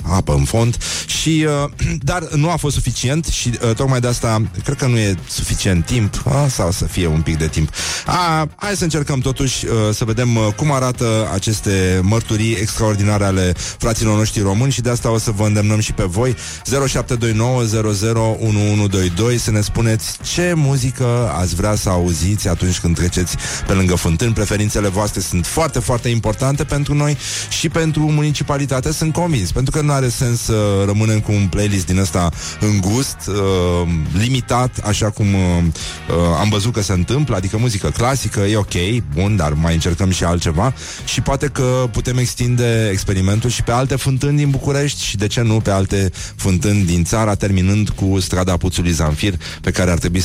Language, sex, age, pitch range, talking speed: Romanian, male, 30-49, 95-125 Hz, 180 wpm